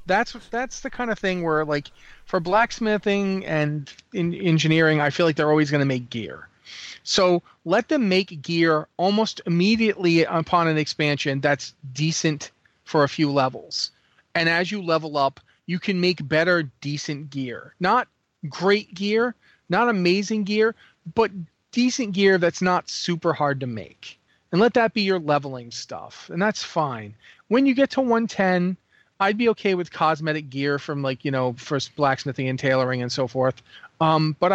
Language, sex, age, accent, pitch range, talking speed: English, male, 30-49, American, 145-190 Hz, 170 wpm